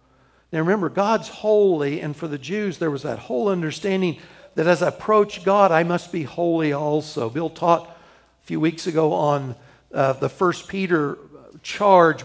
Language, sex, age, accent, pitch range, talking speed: English, male, 60-79, American, 150-180 Hz, 170 wpm